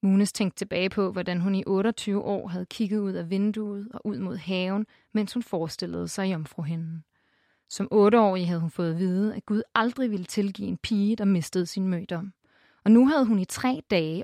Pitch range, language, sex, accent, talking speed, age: 185-220 Hz, Danish, female, native, 205 wpm, 30-49